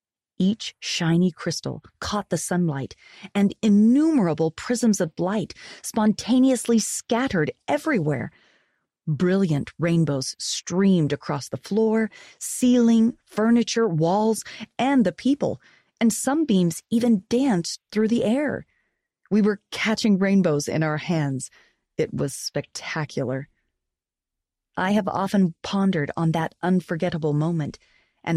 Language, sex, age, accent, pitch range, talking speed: English, female, 30-49, American, 150-215 Hz, 110 wpm